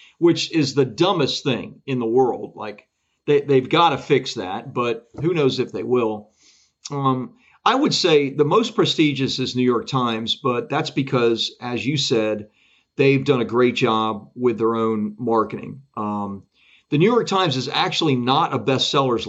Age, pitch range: 40-59, 120-140 Hz